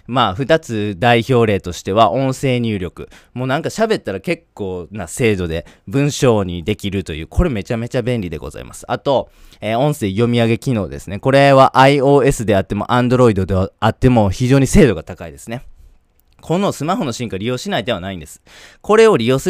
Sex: male